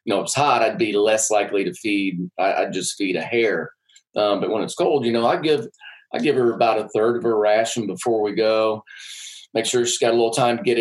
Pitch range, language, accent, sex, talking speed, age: 95-115 Hz, English, American, male, 260 wpm, 30-49